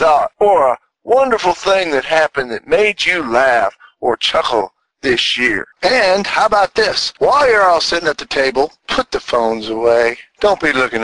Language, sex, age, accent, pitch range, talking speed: English, male, 50-69, American, 125-170 Hz, 180 wpm